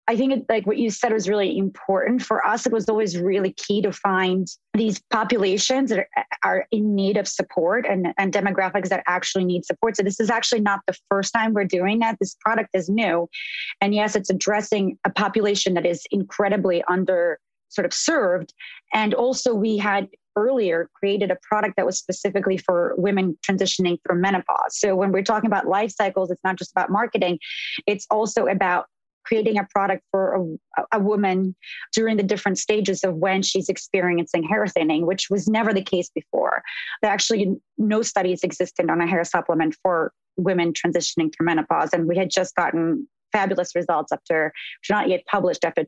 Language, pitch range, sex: English, 185-220 Hz, female